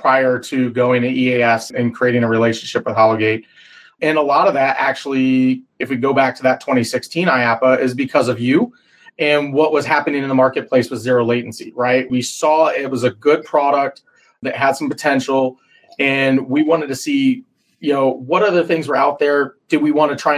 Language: English